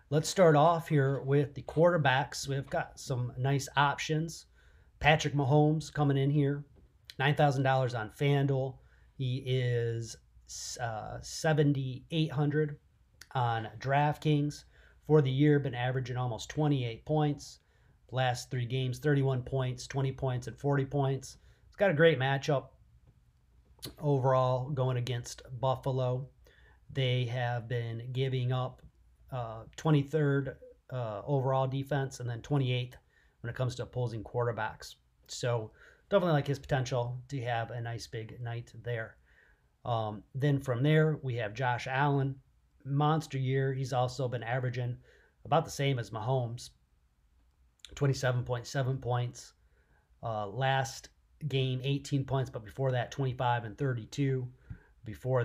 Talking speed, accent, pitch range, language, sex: 125 wpm, American, 120-140 Hz, English, male